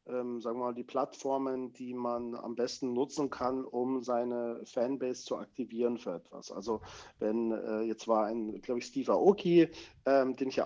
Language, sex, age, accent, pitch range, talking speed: German, male, 40-59, German, 125-150 Hz, 185 wpm